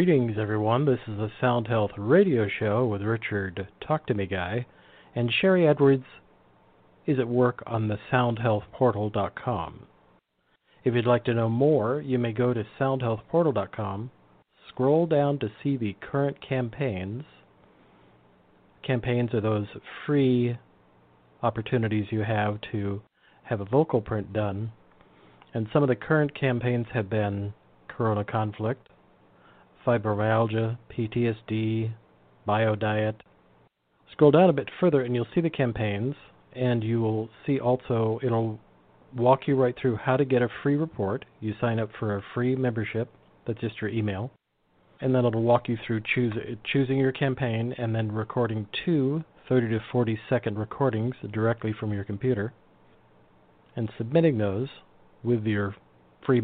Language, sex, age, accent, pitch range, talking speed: English, male, 40-59, American, 105-130 Hz, 140 wpm